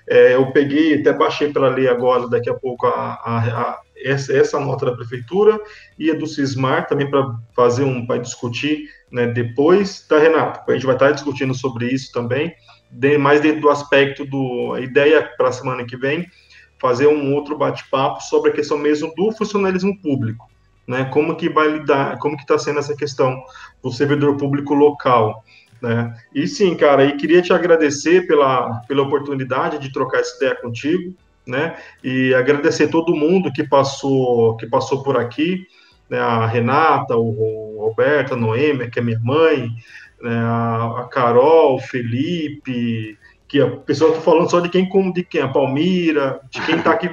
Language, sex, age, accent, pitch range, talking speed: Portuguese, male, 20-39, Brazilian, 130-165 Hz, 180 wpm